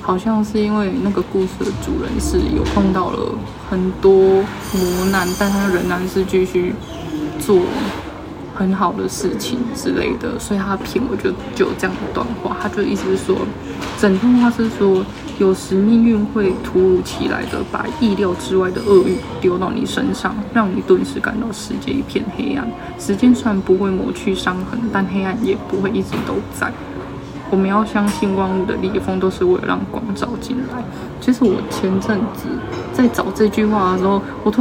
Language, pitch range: Chinese, 190-240 Hz